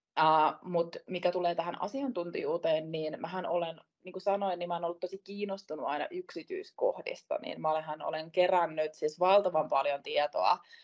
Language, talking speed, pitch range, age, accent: Finnish, 155 wpm, 160-215 Hz, 20-39, native